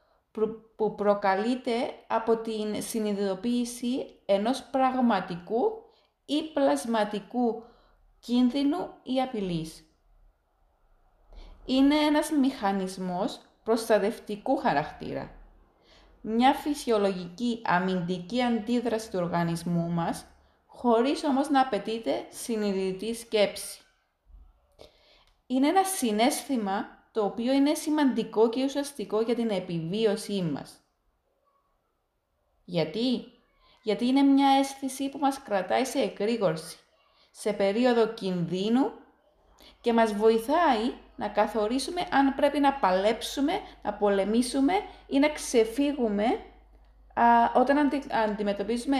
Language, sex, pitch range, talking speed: Greek, female, 205-270 Hz, 90 wpm